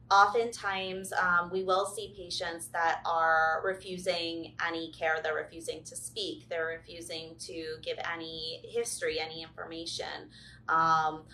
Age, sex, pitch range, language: 30-49, female, 165-210 Hz, English